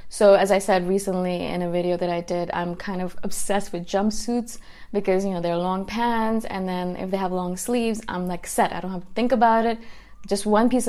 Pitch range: 185-230 Hz